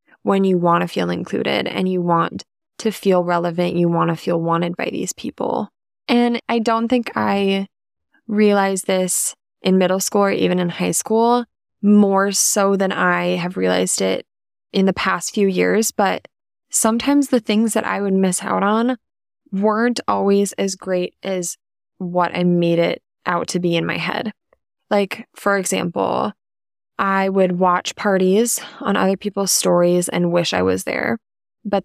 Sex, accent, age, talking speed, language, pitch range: female, American, 20-39, 170 wpm, English, 175-210 Hz